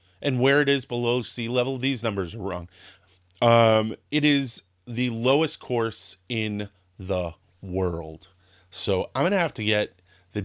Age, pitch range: 30-49, 100-140 Hz